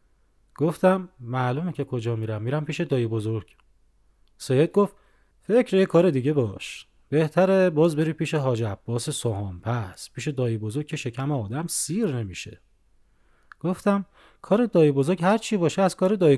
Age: 30-49